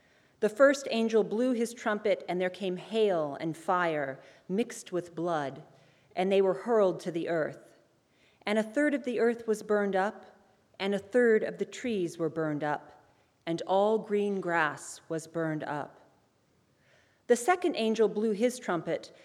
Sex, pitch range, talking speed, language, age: female, 175-235 Hz, 165 wpm, English, 40-59